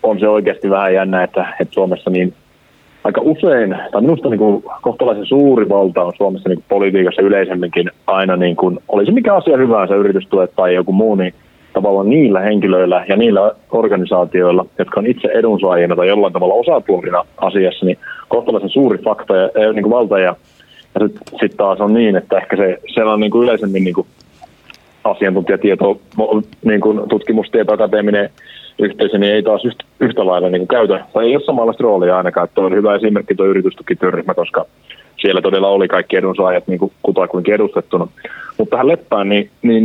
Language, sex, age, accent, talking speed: Finnish, male, 30-49, native, 170 wpm